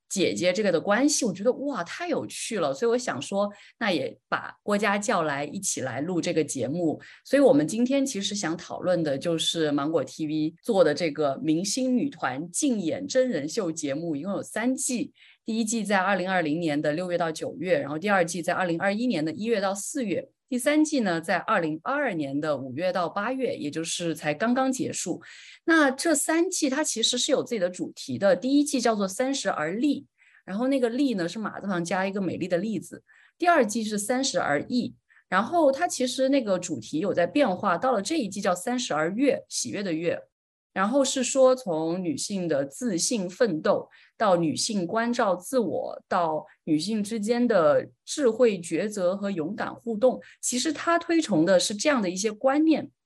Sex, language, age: female, Chinese, 30-49